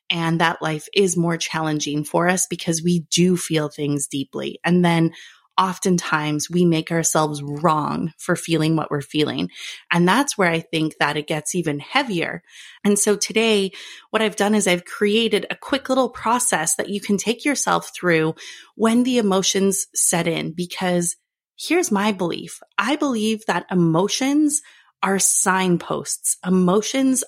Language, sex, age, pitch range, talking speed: English, female, 30-49, 170-215 Hz, 155 wpm